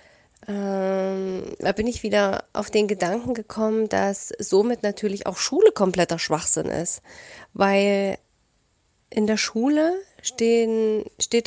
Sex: female